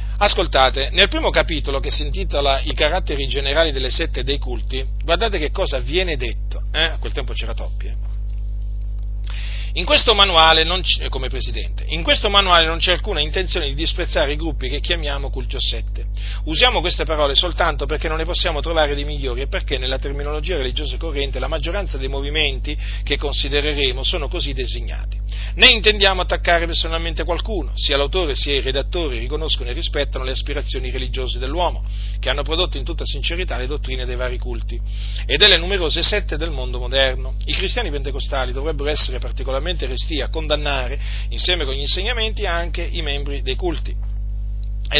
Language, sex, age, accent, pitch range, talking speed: Italian, male, 40-59, native, 105-150 Hz, 165 wpm